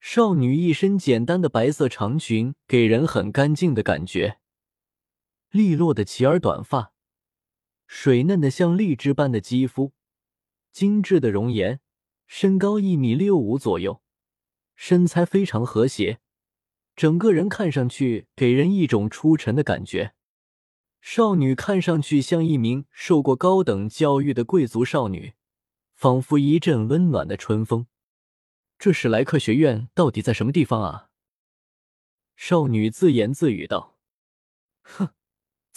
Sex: male